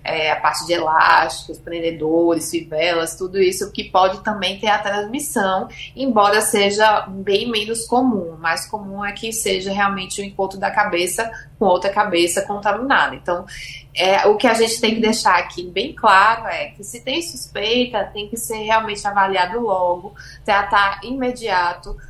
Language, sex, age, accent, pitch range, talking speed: Portuguese, female, 20-39, Brazilian, 190-225 Hz, 160 wpm